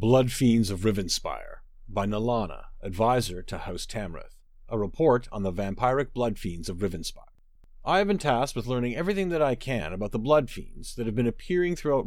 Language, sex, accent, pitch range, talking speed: English, male, American, 110-150 Hz, 190 wpm